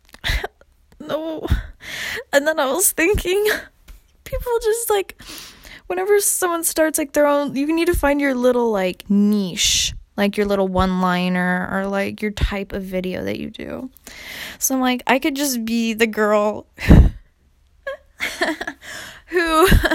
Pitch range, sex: 210-315 Hz, female